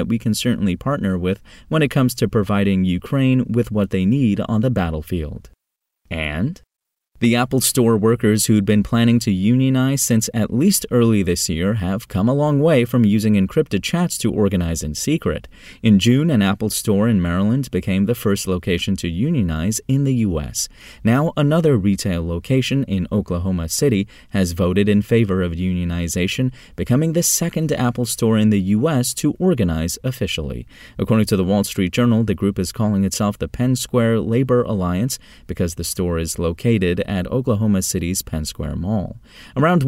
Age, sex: 30-49, male